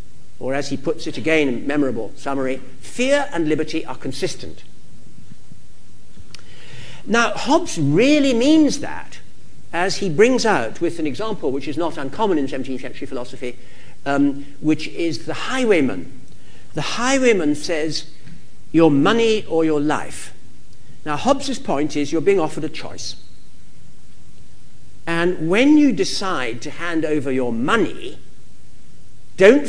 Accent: British